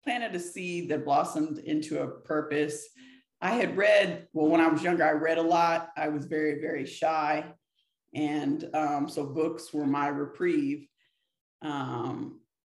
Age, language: 40-59, English